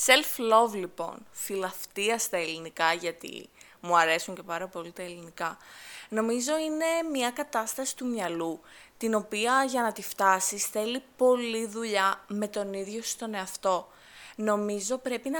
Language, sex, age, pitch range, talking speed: Greek, female, 20-39, 200-250 Hz, 140 wpm